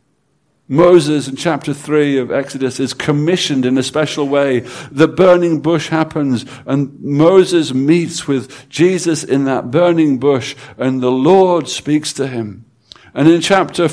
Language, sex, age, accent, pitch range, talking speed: English, male, 60-79, British, 135-165 Hz, 145 wpm